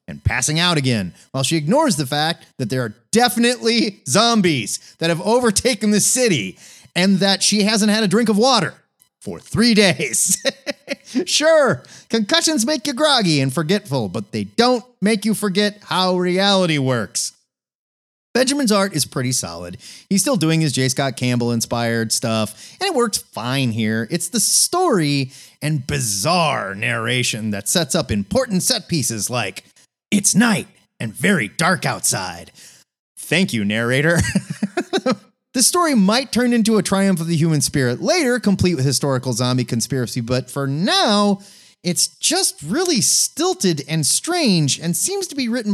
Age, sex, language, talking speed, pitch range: 30-49, male, English, 155 wpm, 130-215 Hz